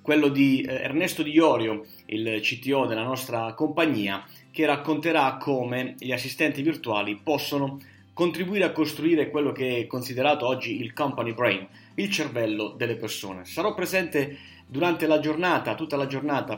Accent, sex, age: native, male, 30-49